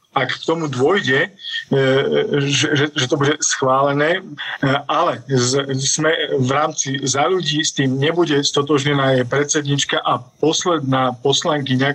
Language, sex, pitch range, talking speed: Slovak, male, 135-155 Hz, 115 wpm